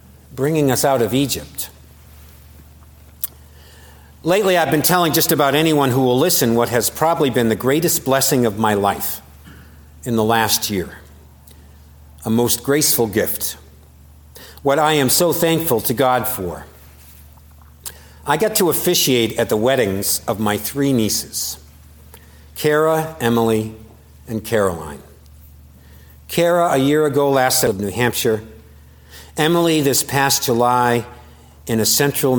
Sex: male